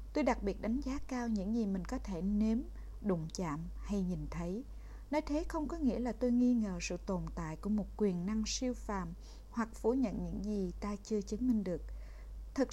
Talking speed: 215 wpm